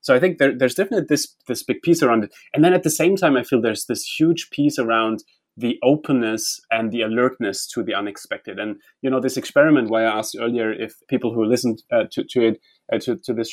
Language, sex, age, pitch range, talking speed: English, male, 30-49, 110-150 Hz, 240 wpm